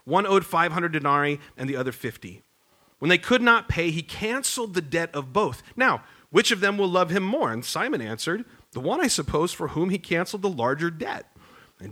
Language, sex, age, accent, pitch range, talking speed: English, male, 40-59, American, 125-185 Hz, 210 wpm